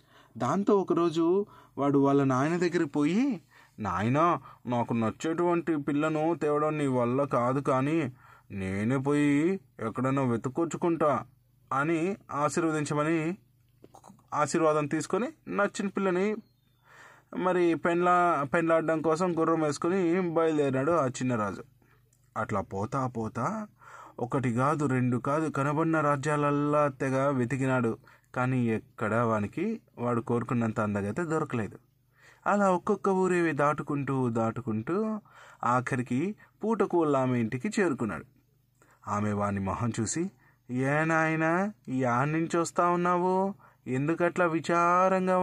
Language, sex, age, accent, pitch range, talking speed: Telugu, male, 20-39, native, 125-170 Hz, 95 wpm